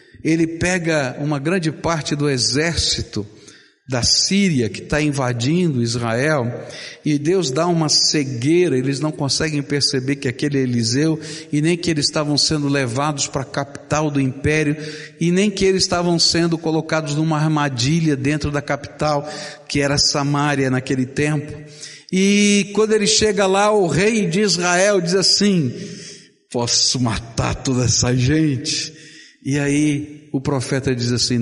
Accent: Brazilian